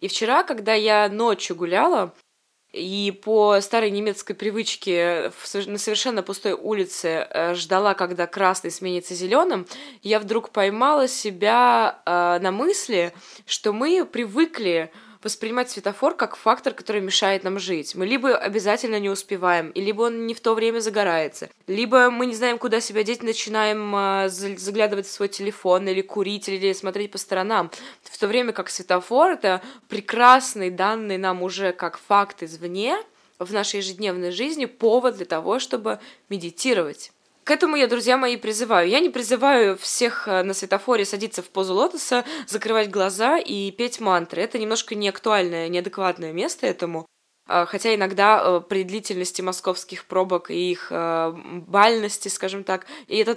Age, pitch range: 20-39, 185-230 Hz